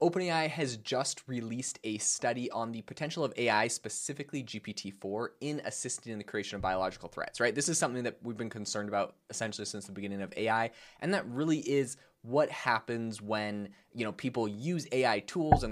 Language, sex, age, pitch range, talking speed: English, male, 20-39, 100-130 Hz, 190 wpm